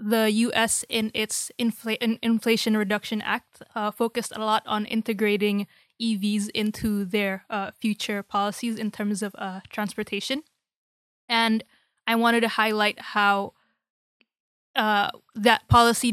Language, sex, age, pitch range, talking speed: English, female, 20-39, 205-225 Hz, 125 wpm